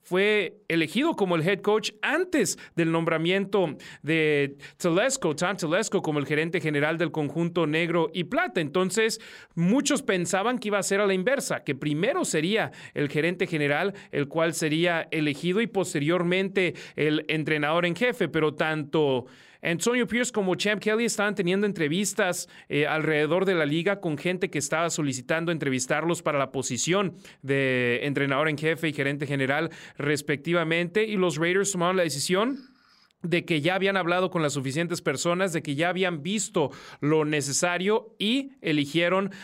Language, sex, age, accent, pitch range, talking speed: Spanish, male, 40-59, Mexican, 155-195 Hz, 155 wpm